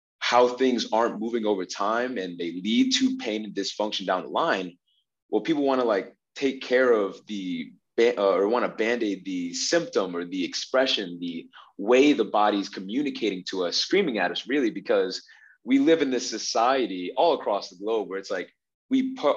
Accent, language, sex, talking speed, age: American, English, male, 185 wpm, 30-49